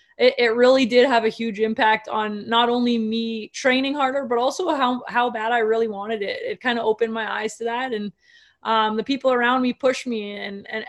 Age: 20-39